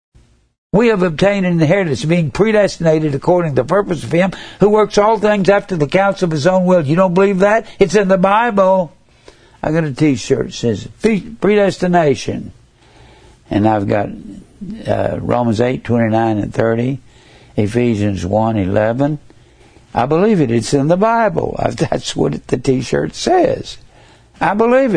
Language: English